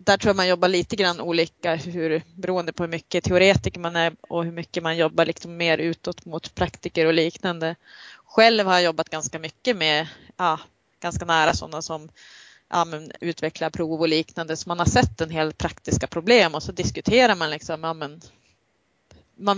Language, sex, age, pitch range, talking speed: Swedish, female, 30-49, 160-185 Hz, 190 wpm